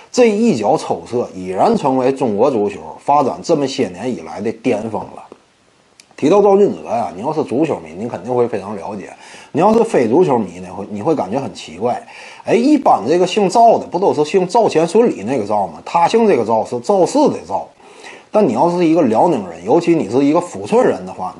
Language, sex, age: Chinese, male, 30-49